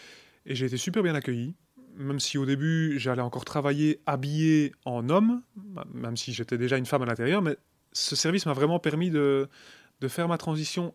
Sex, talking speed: male, 190 wpm